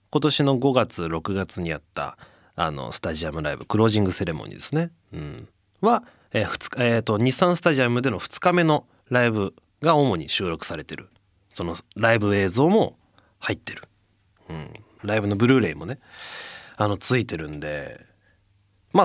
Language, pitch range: Japanese, 100-140 Hz